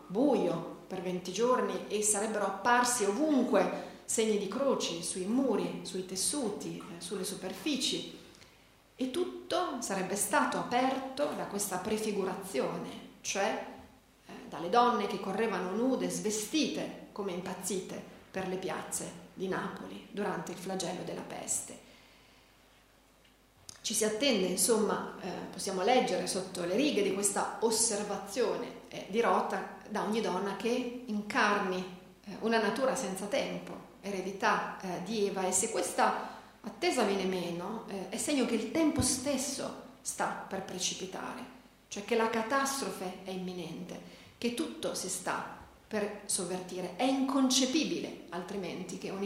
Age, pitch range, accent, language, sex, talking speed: 40-59, 190-240 Hz, native, Italian, female, 130 wpm